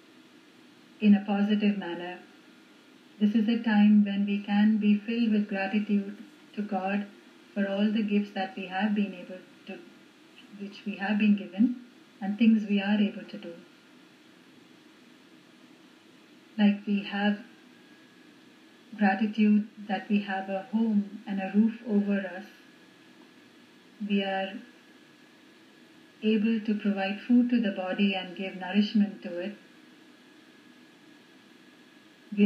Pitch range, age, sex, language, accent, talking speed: 205-285 Hz, 30-49, female, English, Indian, 125 wpm